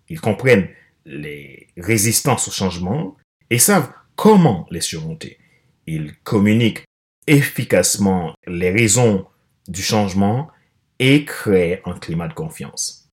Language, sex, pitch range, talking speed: French, male, 95-150 Hz, 110 wpm